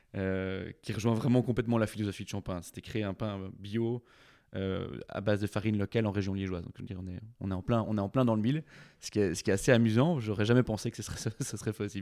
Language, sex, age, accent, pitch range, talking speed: French, male, 20-39, French, 100-120 Hz, 250 wpm